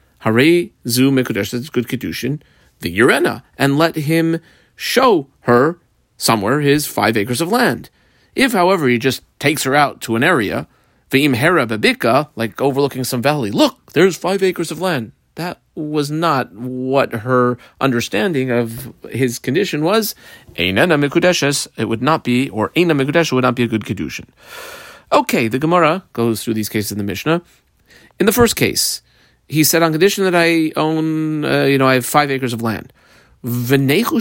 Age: 40-59